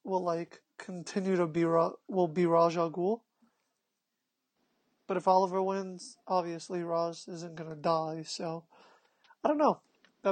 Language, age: English, 30-49